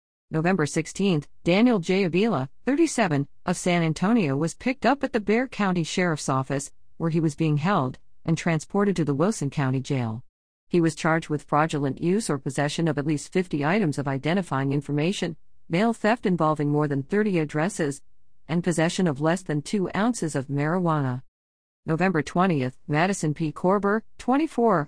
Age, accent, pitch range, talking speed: 50-69, American, 145-195 Hz, 165 wpm